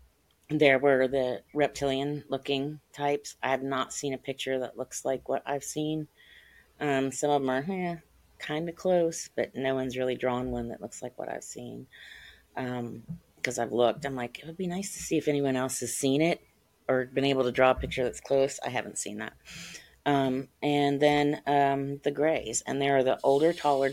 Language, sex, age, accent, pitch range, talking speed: English, female, 30-49, American, 125-145 Hz, 200 wpm